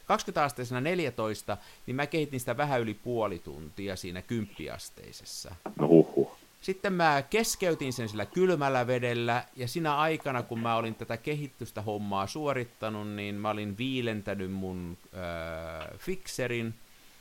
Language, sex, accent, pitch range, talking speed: Finnish, male, native, 95-125 Hz, 125 wpm